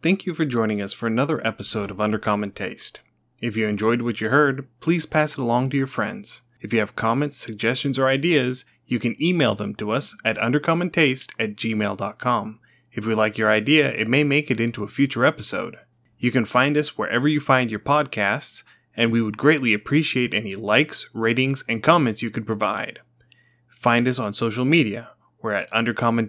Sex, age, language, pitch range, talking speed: male, 30-49, English, 110-140 Hz, 190 wpm